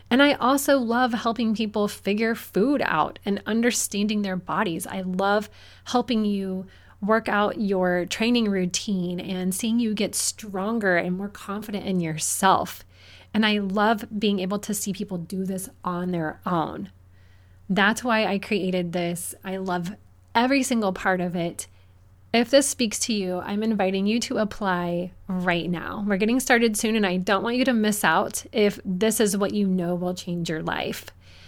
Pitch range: 180-210 Hz